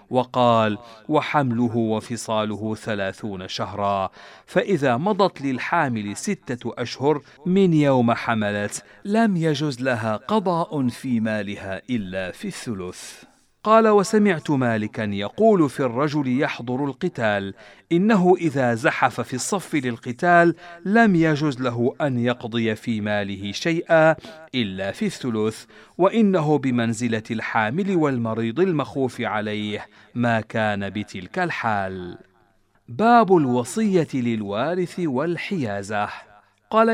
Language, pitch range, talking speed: Arabic, 110-165 Hz, 100 wpm